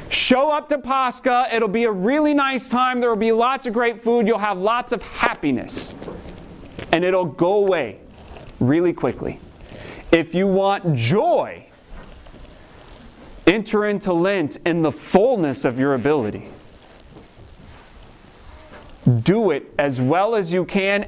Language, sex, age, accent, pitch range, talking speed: English, male, 30-49, American, 140-215 Hz, 135 wpm